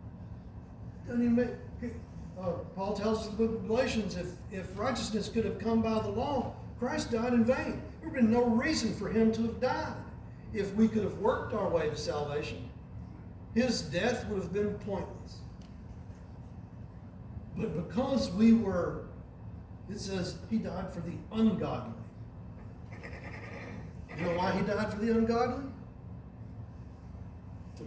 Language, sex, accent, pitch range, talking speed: English, male, American, 145-235 Hz, 150 wpm